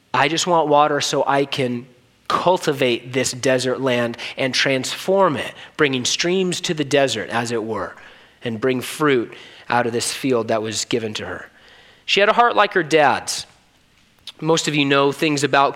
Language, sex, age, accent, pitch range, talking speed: English, male, 30-49, American, 140-170 Hz, 180 wpm